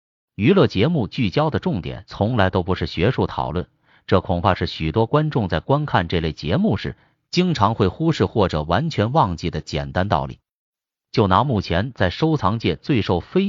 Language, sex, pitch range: Chinese, male, 85-115 Hz